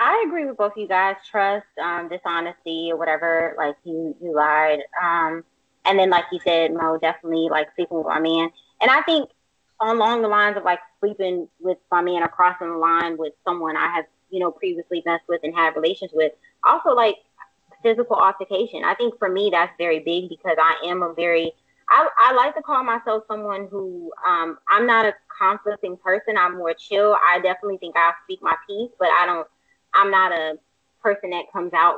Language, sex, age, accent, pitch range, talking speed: English, female, 20-39, American, 165-200 Hz, 195 wpm